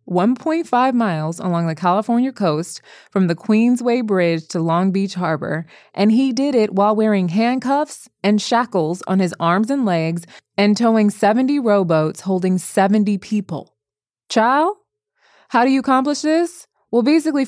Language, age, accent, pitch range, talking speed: English, 20-39, American, 170-225 Hz, 145 wpm